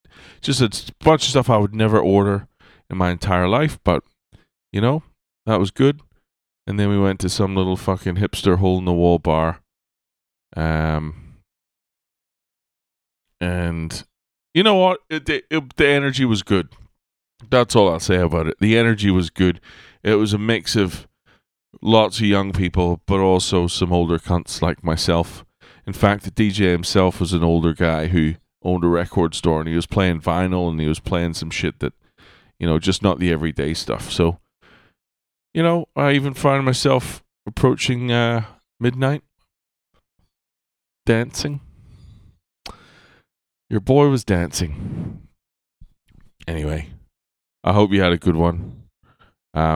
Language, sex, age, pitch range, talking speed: English, male, 30-49, 85-110 Hz, 145 wpm